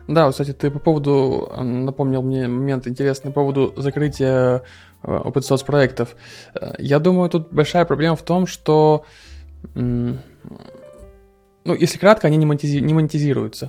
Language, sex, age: Russian, male, 20-39